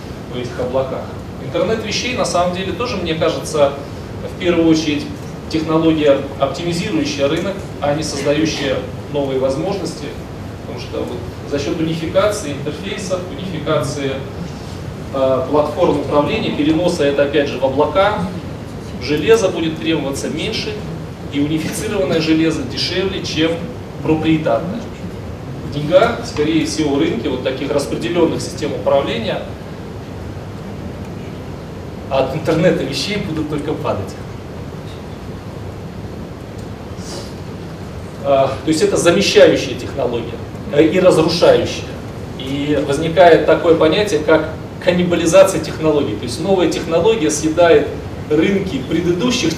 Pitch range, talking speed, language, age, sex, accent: 140-170 Hz, 105 wpm, Russian, 30-49, male, native